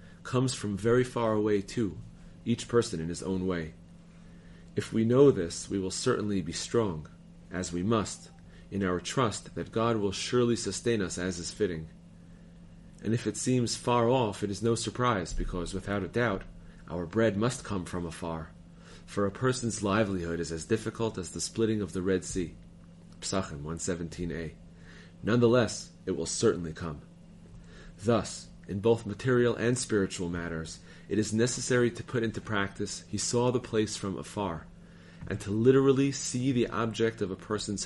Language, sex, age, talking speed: English, male, 30-49, 170 wpm